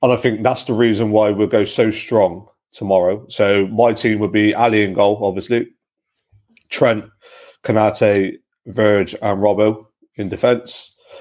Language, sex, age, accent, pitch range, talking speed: English, male, 30-49, British, 95-110 Hz, 150 wpm